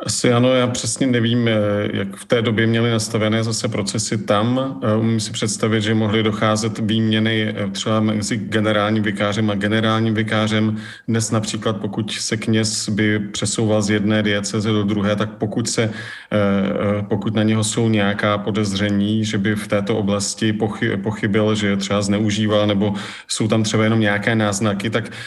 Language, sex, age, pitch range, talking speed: Czech, male, 40-59, 105-115 Hz, 155 wpm